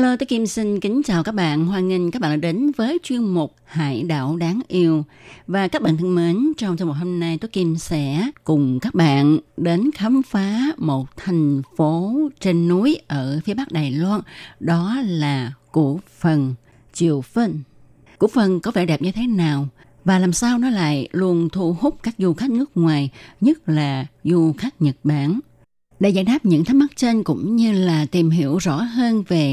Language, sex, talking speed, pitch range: Vietnamese, female, 195 wpm, 150-210 Hz